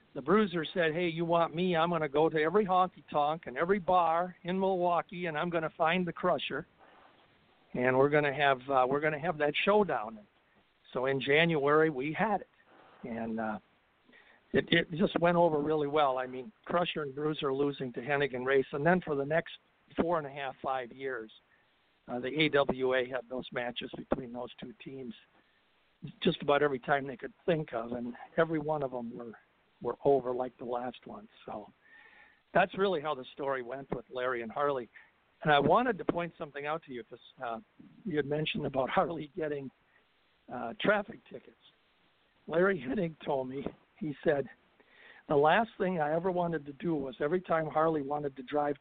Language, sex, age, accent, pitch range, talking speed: English, male, 60-79, American, 135-175 Hz, 190 wpm